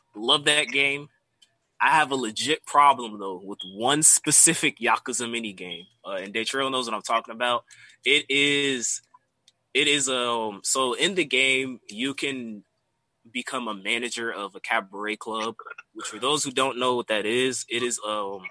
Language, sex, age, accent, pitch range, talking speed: English, male, 20-39, American, 105-130 Hz, 170 wpm